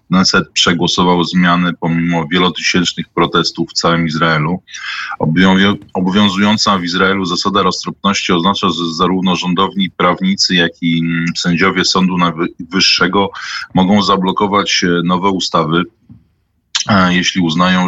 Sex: male